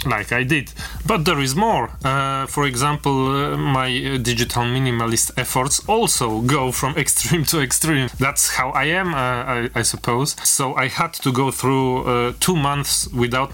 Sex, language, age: male, English, 30-49